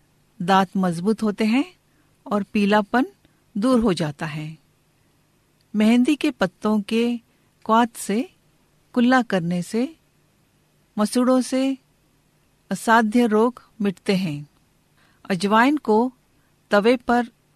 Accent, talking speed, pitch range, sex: native, 100 wpm, 185-240 Hz, female